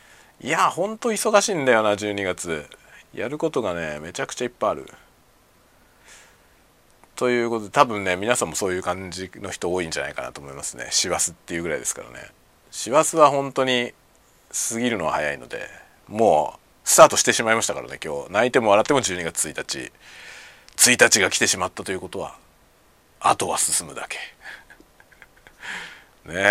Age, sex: 40-59, male